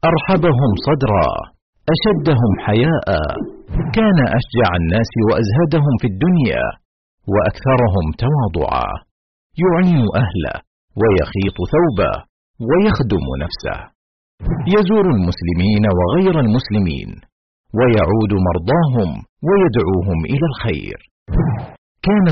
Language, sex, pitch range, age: Arabic, male, 100-155 Hz, 50-69